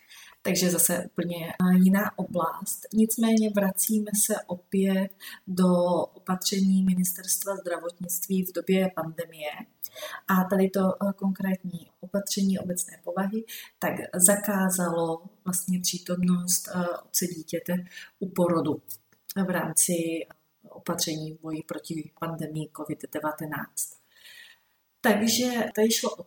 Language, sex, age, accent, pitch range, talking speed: Czech, female, 30-49, native, 175-200 Hz, 100 wpm